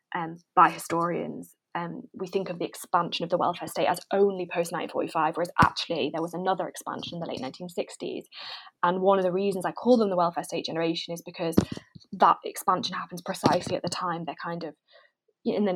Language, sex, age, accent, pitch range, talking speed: English, female, 20-39, British, 170-195 Hz, 200 wpm